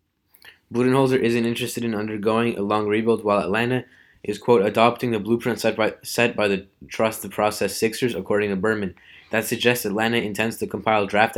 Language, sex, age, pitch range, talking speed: English, male, 20-39, 100-115 Hz, 175 wpm